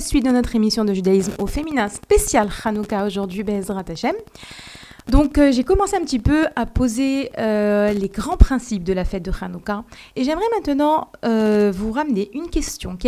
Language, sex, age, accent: French, female, 30-49, French